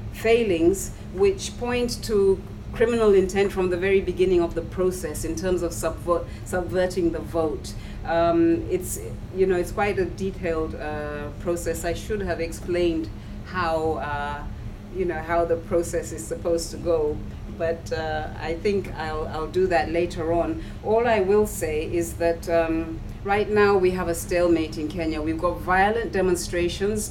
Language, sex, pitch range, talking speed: English, female, 160-185 Hz, 165 wpm